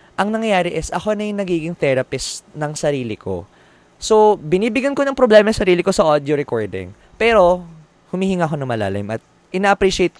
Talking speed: 170 wpm